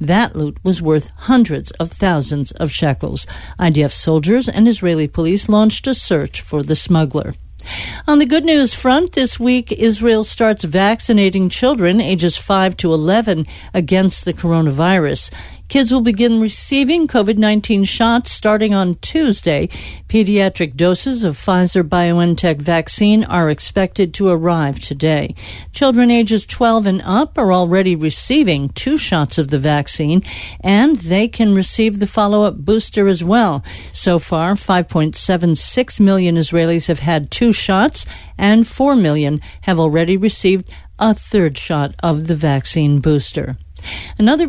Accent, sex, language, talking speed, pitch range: American, female, English, 140 wpm, 165-220 Hz